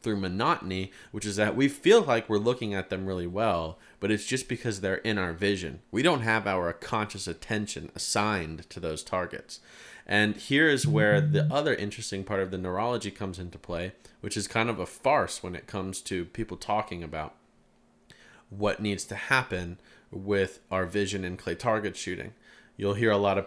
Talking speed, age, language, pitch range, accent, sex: 190 wpm, 30-49, English, 95-110 Hz, American, male